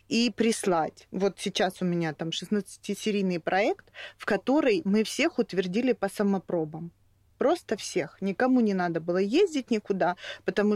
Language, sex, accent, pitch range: Russian, female, native, 180-225 Hz